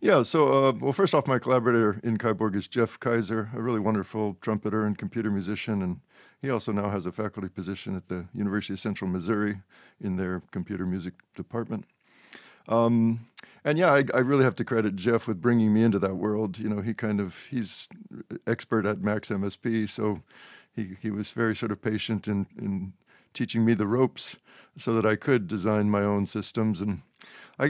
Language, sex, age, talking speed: English, male, 50-69, 195 wpm